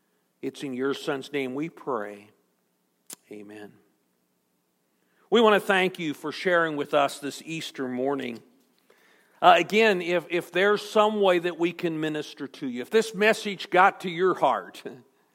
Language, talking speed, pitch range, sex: English, 155 wpm, 145-205 Hz, male